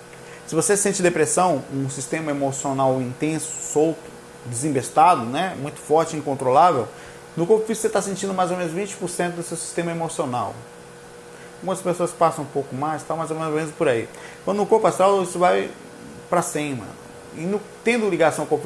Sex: male